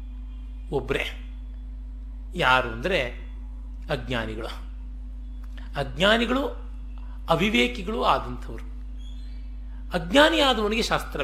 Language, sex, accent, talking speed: Kannada, male, native, 55 wpm